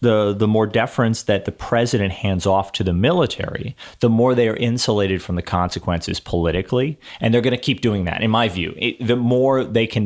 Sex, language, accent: male, English, American